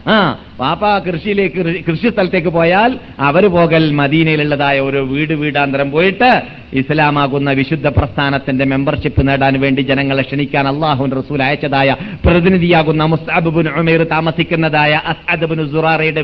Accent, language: native, Malayalam